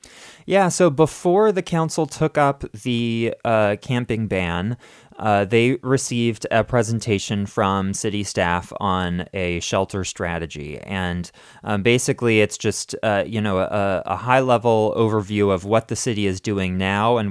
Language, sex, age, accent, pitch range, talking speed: English, male, 20-39, American, 95-115 Hz, 155 wpm